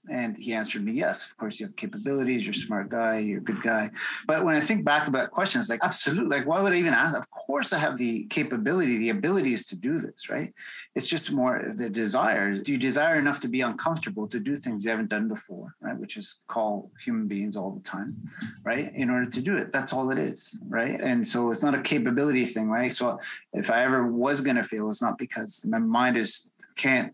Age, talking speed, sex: 30-49, 240 wpm, male